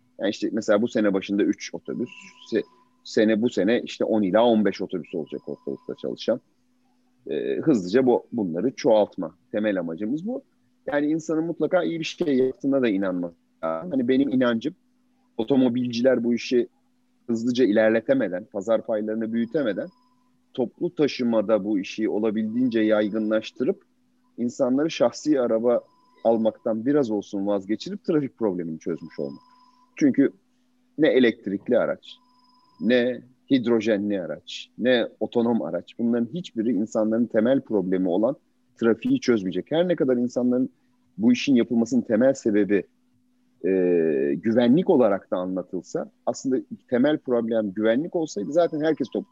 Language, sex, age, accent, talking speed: Turkish, male, 40-59, native, 125 wpm